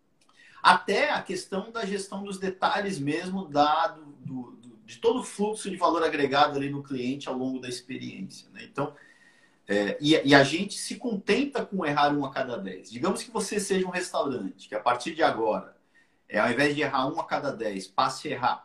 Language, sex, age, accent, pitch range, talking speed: Portuguese, male, 50-69, Brazilian, 135-190 Hz, 185 wpm